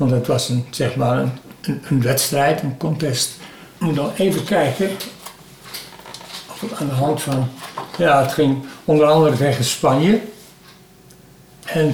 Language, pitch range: Dutch, 130-165 Hz